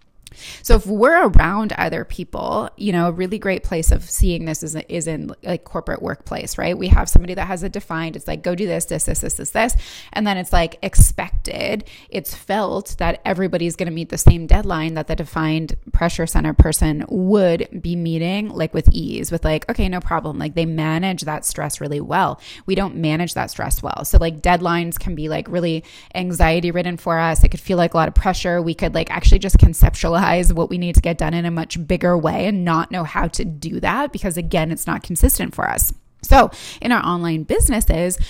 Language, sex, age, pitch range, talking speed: English, female, 20-39, 165-185 Hz, 220 wpm